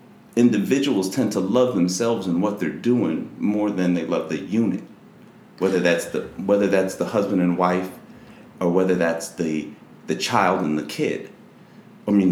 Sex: male